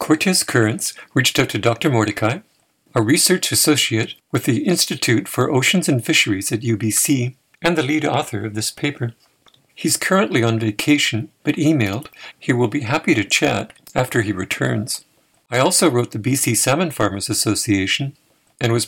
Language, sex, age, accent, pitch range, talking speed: English, male, 50-69, American, 110-140 Hz, 160 wpm